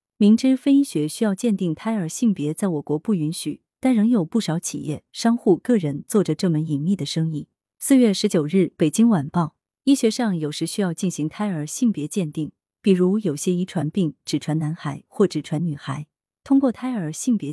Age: 30-49